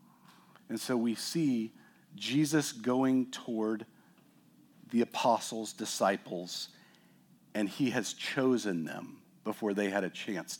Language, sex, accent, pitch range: English, male, American, 95-120 Hz